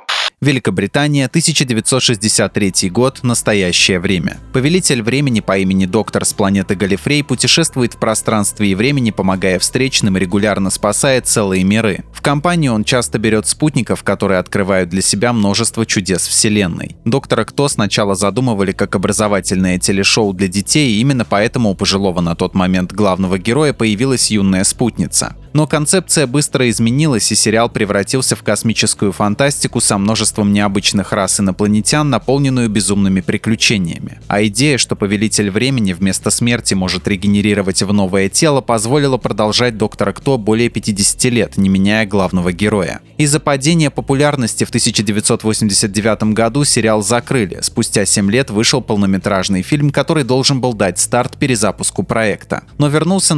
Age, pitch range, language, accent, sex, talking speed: 20-39, 100-130 Hz, Russian, native, male, 140 wpm